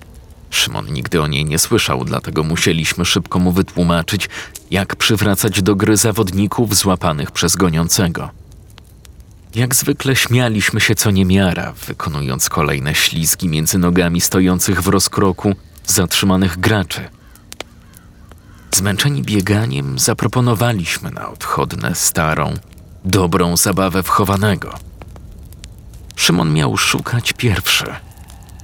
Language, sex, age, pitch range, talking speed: Polish, male, 40-59, 85-105 Hz, 100 wpm